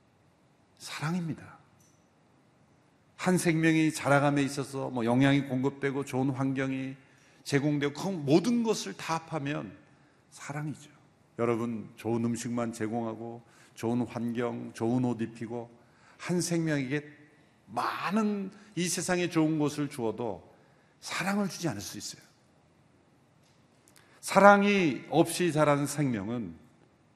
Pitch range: 120-165 Hz